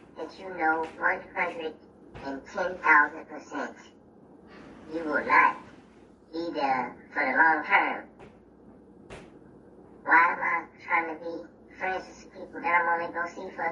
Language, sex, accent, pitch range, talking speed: English, male, American, 195-280 Hz, 140 wpm